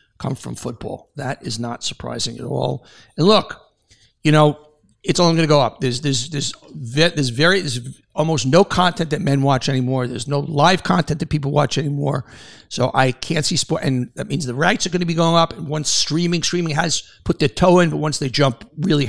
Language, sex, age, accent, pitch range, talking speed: English, male, 60-79, American, 135-175 Hz, 225 wpm